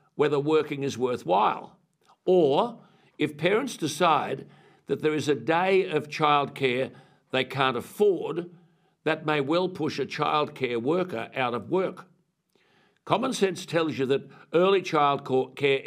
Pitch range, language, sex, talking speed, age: 135-170 Hz, English, male, 130 wpm, 60-79